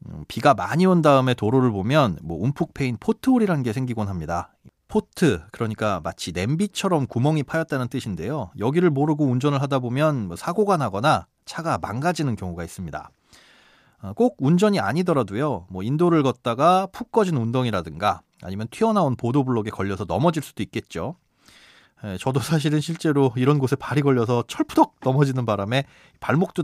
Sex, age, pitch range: male, 30-49, 110-160 Hz